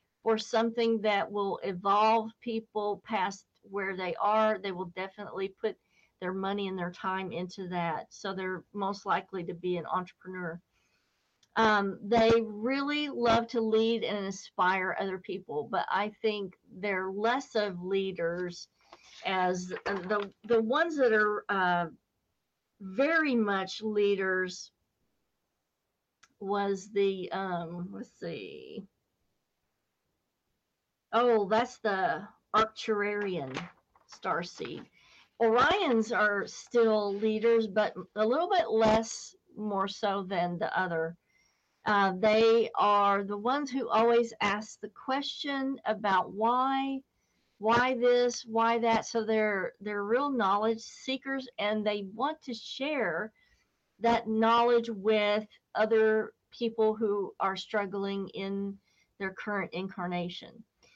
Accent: American